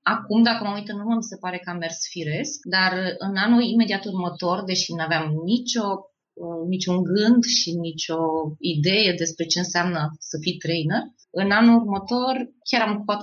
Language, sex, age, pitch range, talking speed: Romanian, female, 20-39, 165-215 Hz, 170 wpm